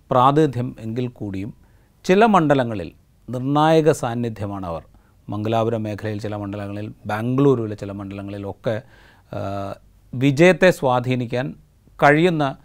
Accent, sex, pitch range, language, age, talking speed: native, male, 105-130 Hz, Malayalam, 40-59, 85 wpm